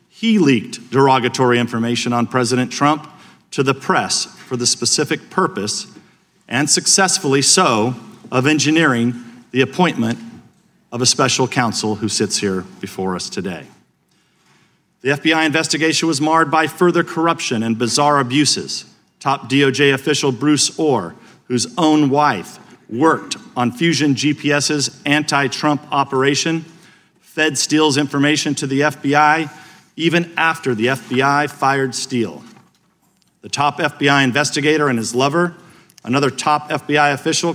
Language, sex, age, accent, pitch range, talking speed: English, male, 40-59, American, 130-160 Hz, 125 wpm